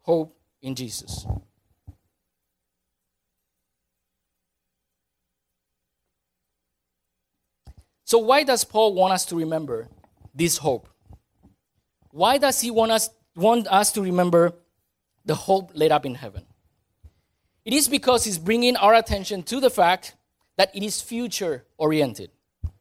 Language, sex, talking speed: English, male, 110 wpm